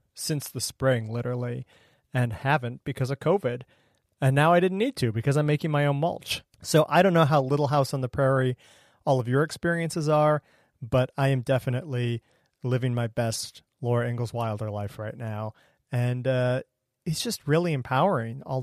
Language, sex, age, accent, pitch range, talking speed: English, male, 40-59, American, 120-145 Hz, 180 wpm